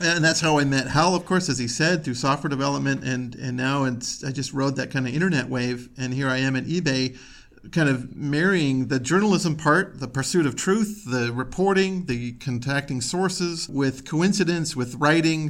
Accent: American